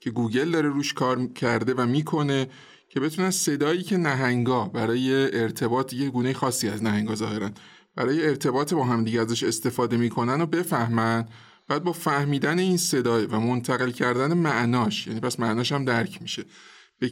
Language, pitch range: Persian, 120-160 Hz